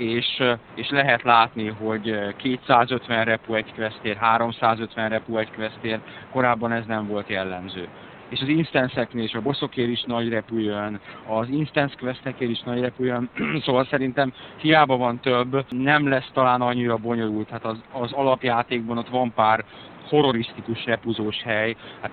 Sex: male